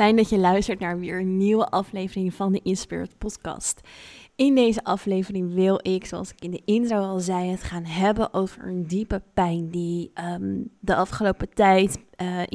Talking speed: 180 wpm